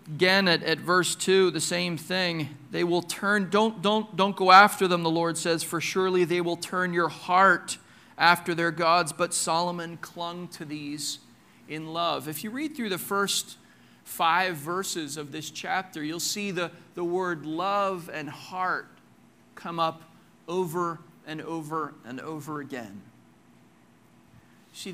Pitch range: 155-185 Hz